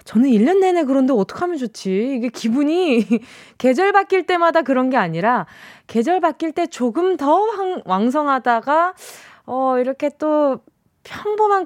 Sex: female